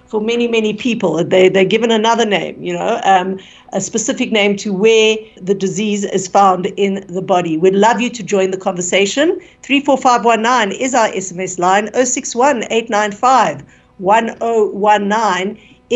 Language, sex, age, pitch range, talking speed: English, female, 60-79, 190-245 Hz, 145 wpm